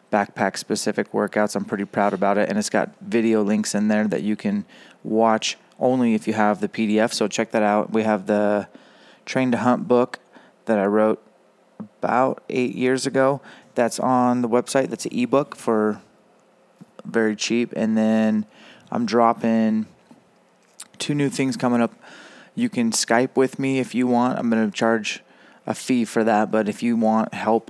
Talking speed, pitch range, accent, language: 180 wpm, 105-125 Hz, American, English